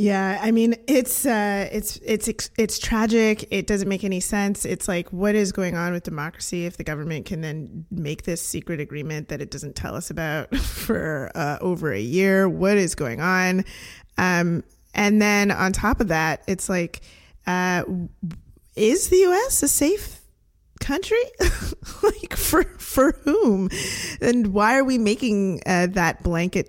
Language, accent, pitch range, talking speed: English, American, 165-215 Hz, 165 wpm